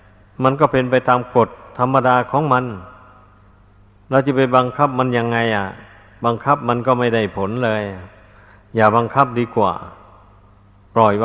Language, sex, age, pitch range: Thai, male, 60-79, 100-125 Hz